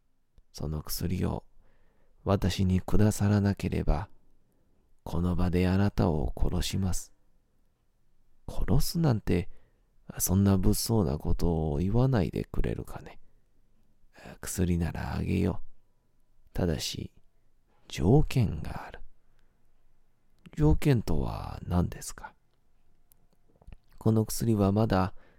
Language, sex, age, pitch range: Japanese, male, 40-59, 85-105 Hz